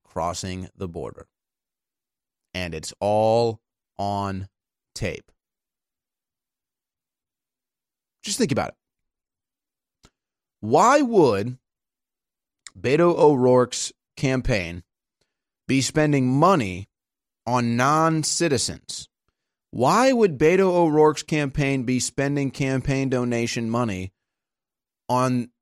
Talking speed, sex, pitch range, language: 75 wpm, male, 100-150 Hz, English